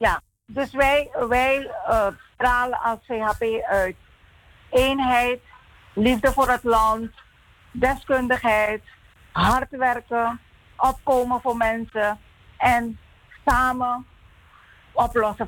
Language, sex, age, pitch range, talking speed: English, female, 50-69, 225-255 Hz, 85 wpm